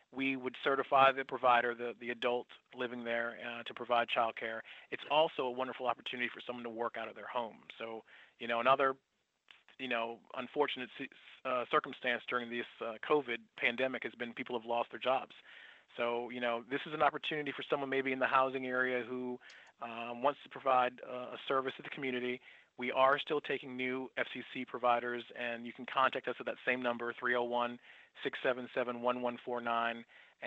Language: English